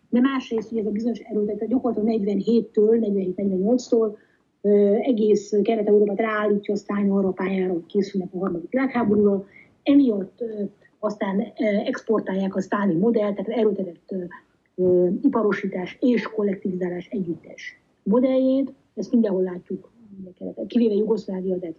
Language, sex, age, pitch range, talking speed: Hungarian, female, 30-49, 195-235 Hz, 120 wpm